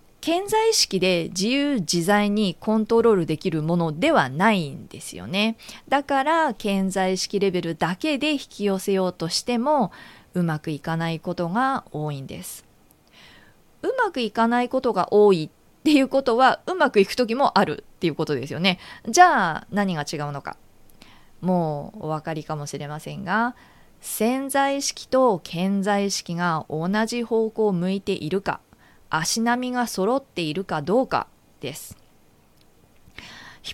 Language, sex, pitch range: Japanese, female, 170-255 Hz